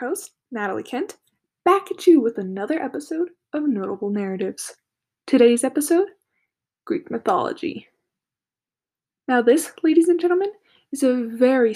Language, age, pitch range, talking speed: English, 10-29, 245-345 Hz, 120 wpm